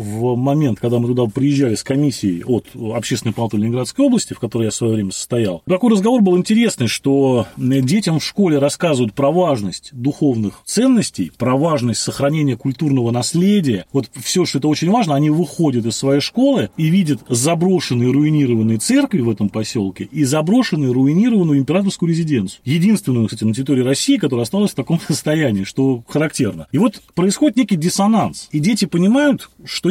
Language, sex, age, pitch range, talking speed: Russian, male, 30-49, 120-185 Hz, 165 wpm